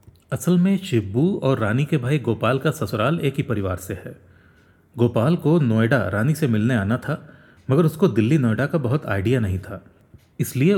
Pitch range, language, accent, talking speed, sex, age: 105-150 Hz, English, Indian, 180 wpm, male, 40-59